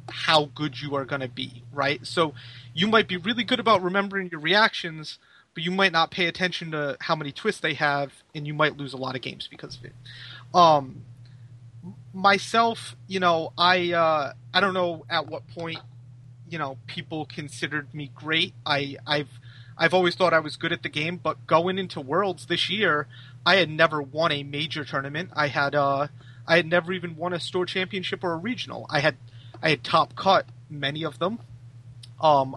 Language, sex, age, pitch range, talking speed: English, male, 30-49, 125-175 Hz, 195 wpm